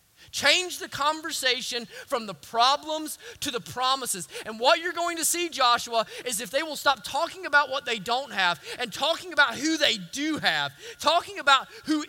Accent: American